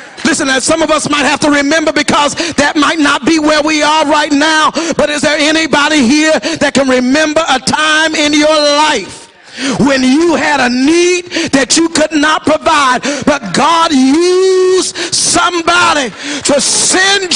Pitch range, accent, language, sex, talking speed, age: 285-330 Hz, American, English, male, 165 wpm, 40-59